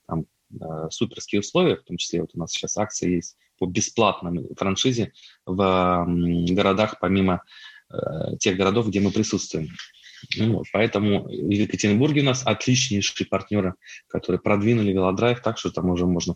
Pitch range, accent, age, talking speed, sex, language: 90-115 Hz, native, 20-39, 160 wpm, male, Russian